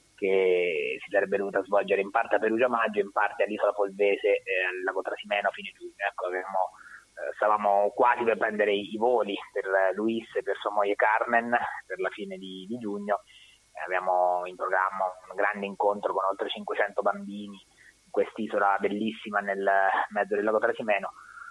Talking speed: 175 wpm